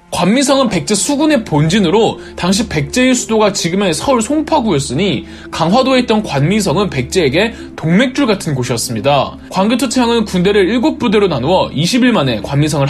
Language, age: Korean, 20-39